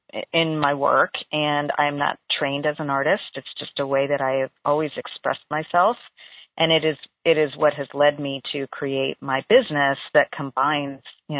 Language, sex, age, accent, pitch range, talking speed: English, female, 40-59, American, 145-175 Hz, 190 wpm